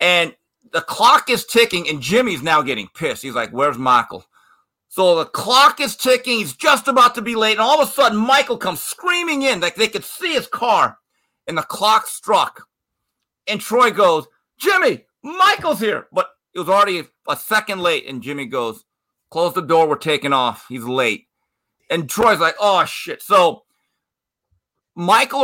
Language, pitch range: English, 150-245 Hz